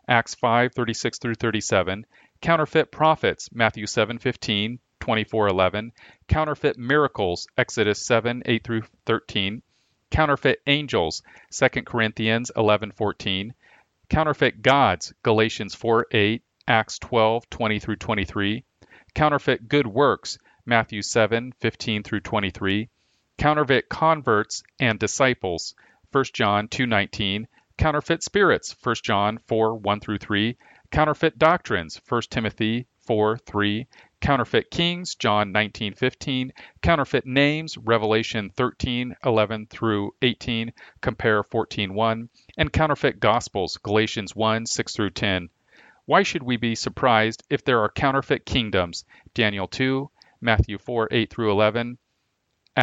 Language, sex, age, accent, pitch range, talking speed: English, male, 40-59, American, 105-125 Hz, 100 wpm